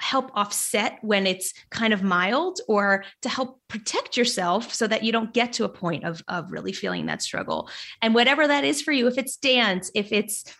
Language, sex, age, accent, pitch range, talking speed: English, female, 20-39, American, 185-225 Hz, 210 wpm